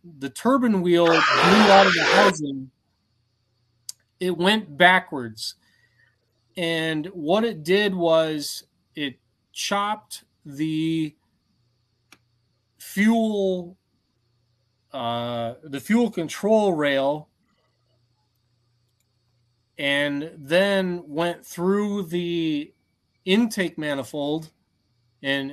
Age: 30-49